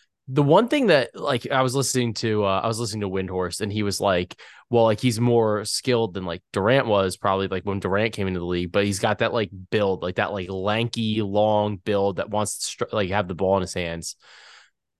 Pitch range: 100-120 Hz